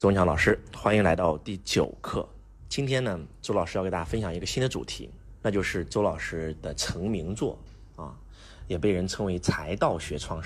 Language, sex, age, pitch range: Chinese, male, 30-49, 85-110 Hz